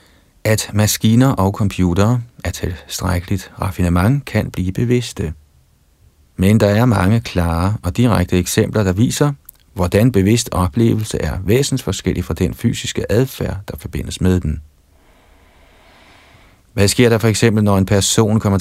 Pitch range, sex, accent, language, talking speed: 85-105 Hz, male, native, Danish, 135 wpm